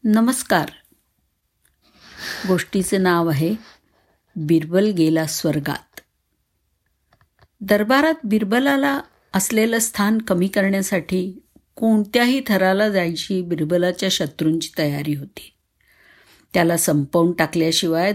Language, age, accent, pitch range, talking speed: Marathi, 50-69, native, 165-215 Hz, 75 wpm